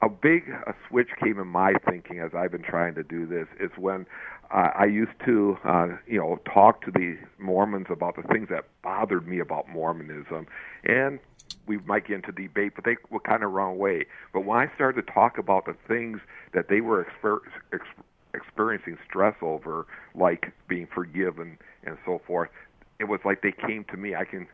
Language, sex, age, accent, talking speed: English, male, 60-79, American, 200 wpm